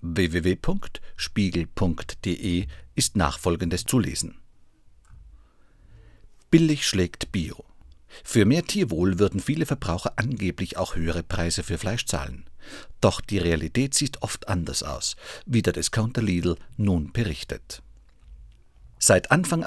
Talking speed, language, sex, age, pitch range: 110 wpm, German, male, 50-69, 85-115 Hz